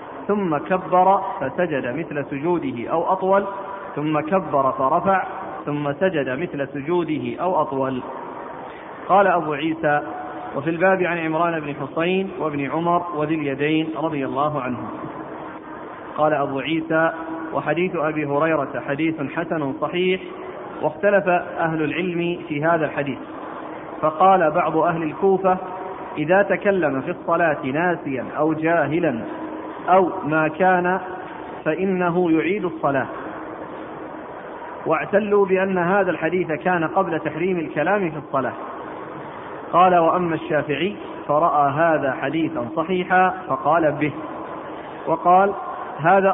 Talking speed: 110 wpm